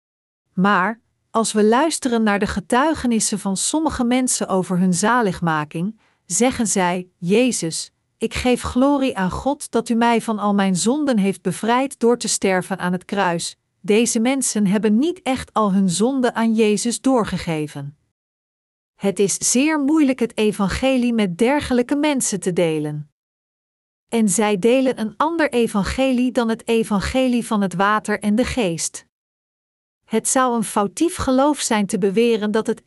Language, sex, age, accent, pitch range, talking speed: Dutch, female, 50-69, Dutch, 200-250 Hz, 150 wpm